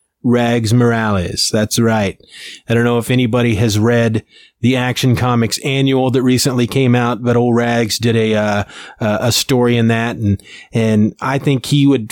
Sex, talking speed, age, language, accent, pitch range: male, 175 wpm, 30-49, English, American, 110-125 Hz